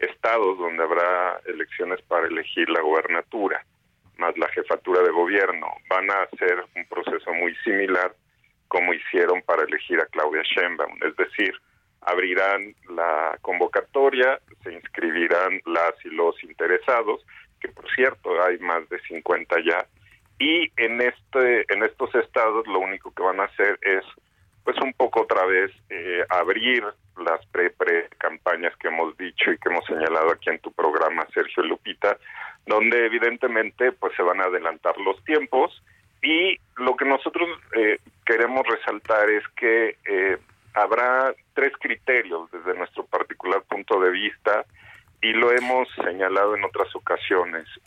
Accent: Mexican